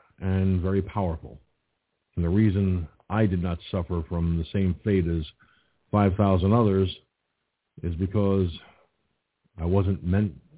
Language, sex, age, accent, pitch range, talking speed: English, male, 50-69, American, 85-105 Hz, 125 wpm